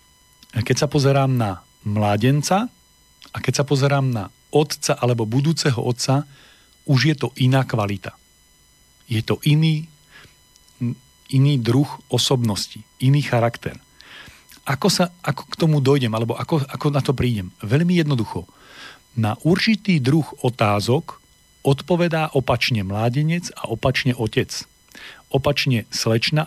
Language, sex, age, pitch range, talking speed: Slovak, male, 40-59, 115-145 Hz, 120 wpm